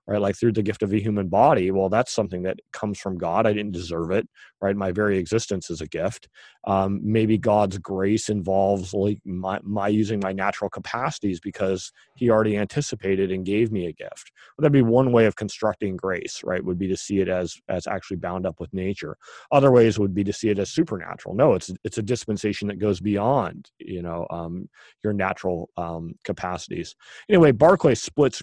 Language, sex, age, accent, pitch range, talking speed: English, male, 30-49, American, 95-115 Hz, 205 wpm